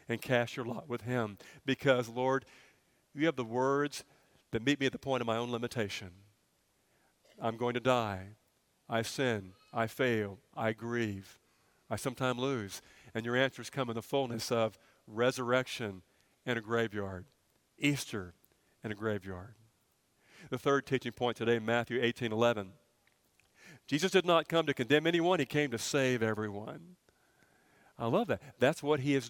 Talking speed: 160 wpm